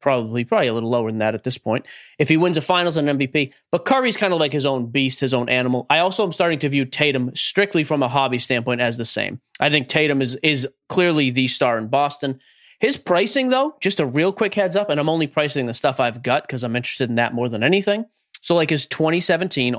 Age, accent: 30-49, American